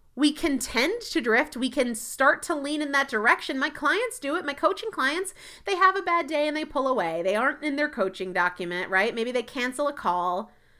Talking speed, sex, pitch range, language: 230 wpm, female, 200-285 Hz, English